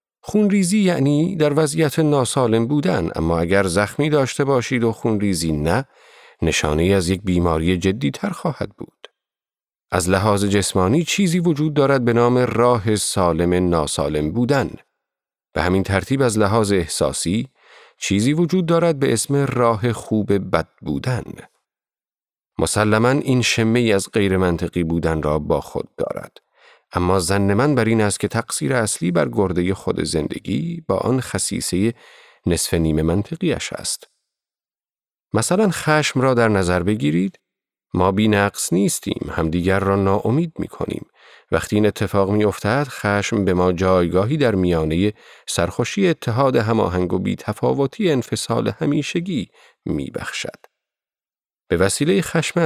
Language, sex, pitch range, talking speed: Persian, male, 95-135 Hz, 140 wpm